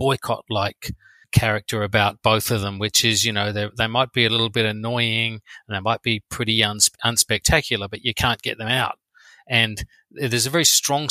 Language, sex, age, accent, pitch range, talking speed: English, male, 40-59, Australian, 105-125 Hz, 195 wpm